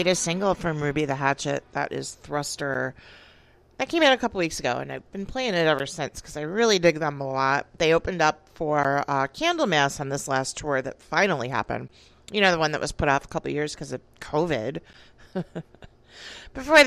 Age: 40-59